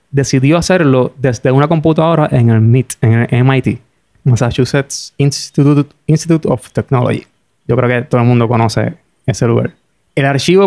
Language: Spanish